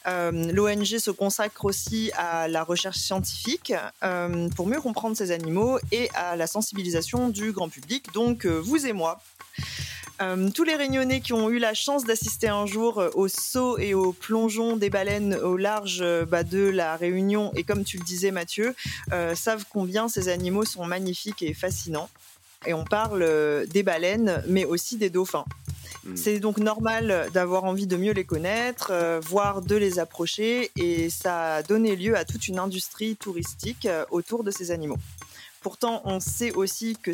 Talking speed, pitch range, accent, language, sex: 175 wpm, 175-220 Hz, French, French, female